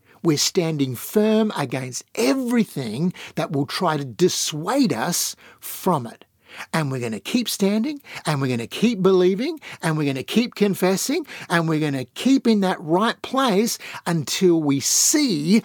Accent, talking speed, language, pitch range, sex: Australian, 165 wpm, English, 155-235 Hz, male